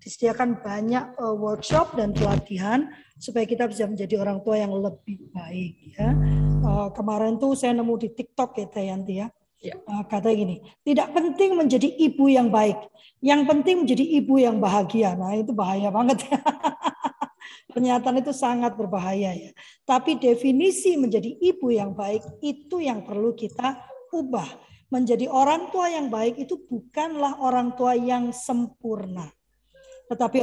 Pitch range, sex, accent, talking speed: 210-265 Hz, female, native, 145 wpm